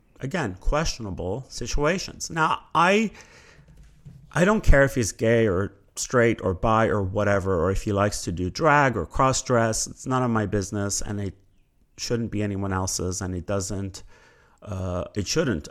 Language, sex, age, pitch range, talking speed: English, male, 30-49, 95-120 Hz, 165 wpm